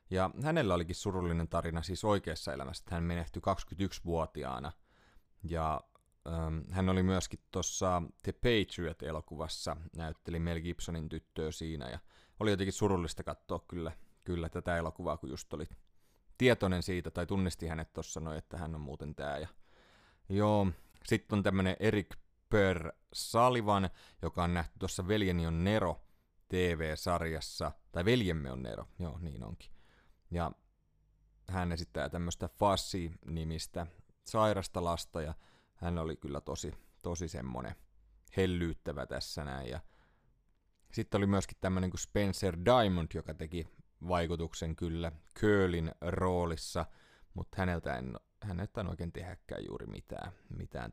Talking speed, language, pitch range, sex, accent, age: 130 wpm, Finnish, 80-95 Hz, male, native, 30-49